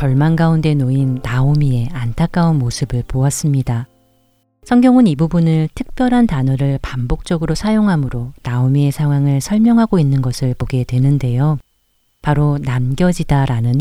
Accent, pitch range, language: native, 130-165 Hz, Korean